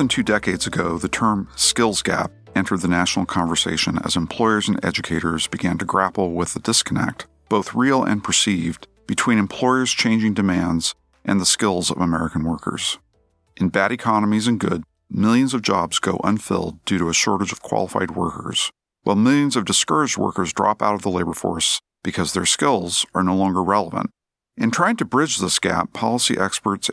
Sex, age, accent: male, 50-69, American